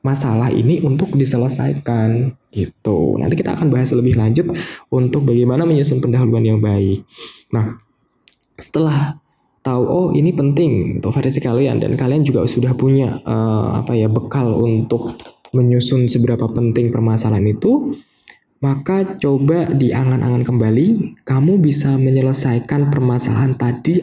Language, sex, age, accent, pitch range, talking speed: Indonesian, male, 20-39, native, 115-140 Hz, 125 wpm